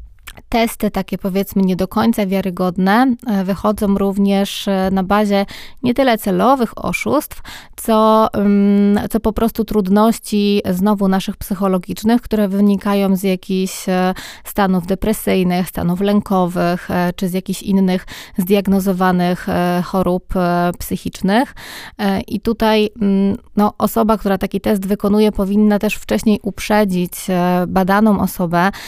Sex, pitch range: female, 185-210 Hz